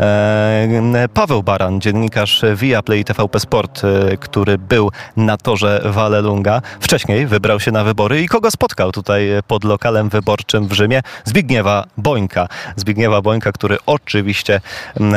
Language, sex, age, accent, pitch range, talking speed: Polish, male, 30-49, native, 105-130 Hz, 125 wpm